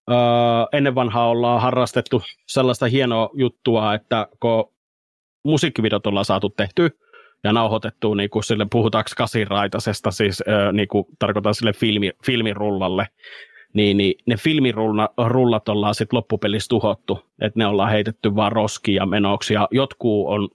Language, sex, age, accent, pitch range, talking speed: Finnish, male, 30-49, native, 100-120 Hz, 130 wpm